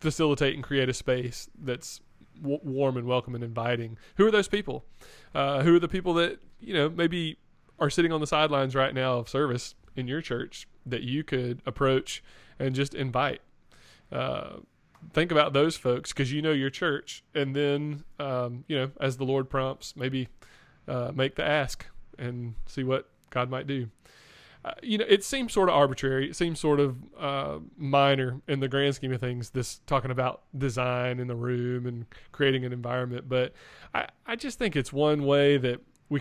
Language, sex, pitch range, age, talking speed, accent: English, male, 125-150 Hz, 20-39, 190 wpm, American